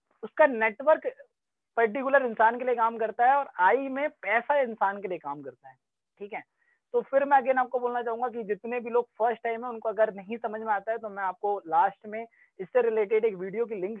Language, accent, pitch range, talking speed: Hindi, native, 210-255 Hz, 45 wpm